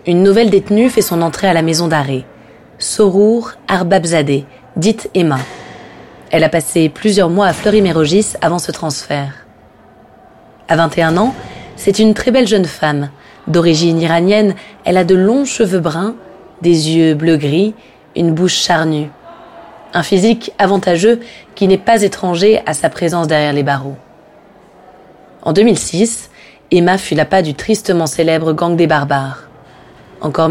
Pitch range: 160-200 Hz